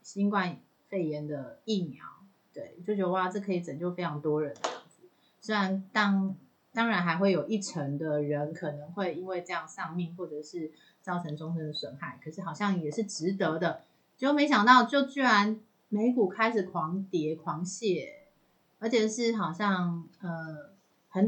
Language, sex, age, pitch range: Chinese, female, 30-49, 165-210 Hz